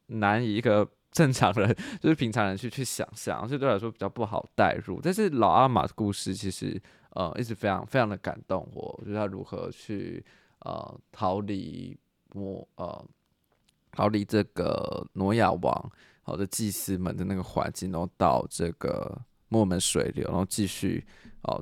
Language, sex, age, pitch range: Chinese, male, 20-39, 95-120 Hz